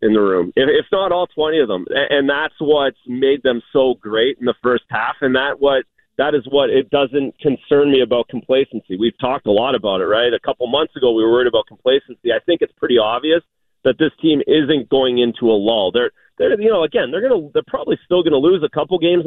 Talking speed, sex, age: 235 wpm, male, 40-59